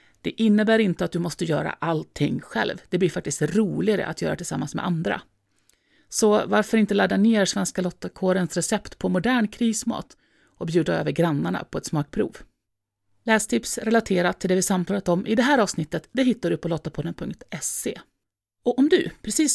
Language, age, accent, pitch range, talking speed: Swedish, 30-49, native, 170-225 Hz, 170 wpm